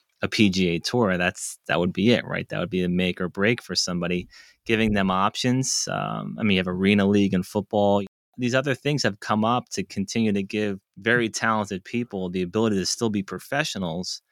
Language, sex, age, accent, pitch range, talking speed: English, male, 30-49, American, 95-115 Hz, 205 wpm